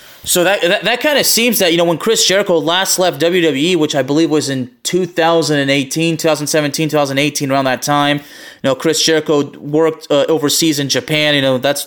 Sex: male